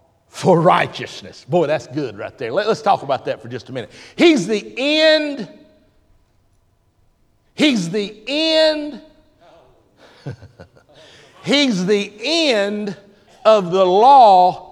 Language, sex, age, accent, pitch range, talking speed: English, male, 50-69, American, 195-290 Hz, 110 wpm